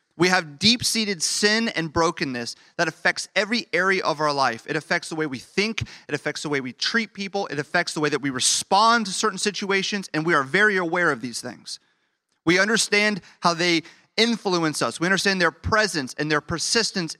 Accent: American